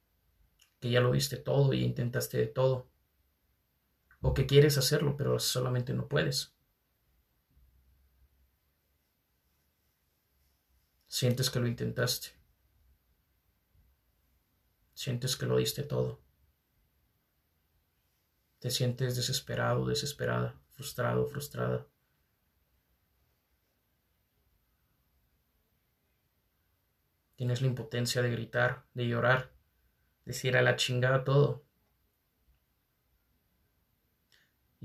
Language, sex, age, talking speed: Spanish, male, 30-49, 75 wpm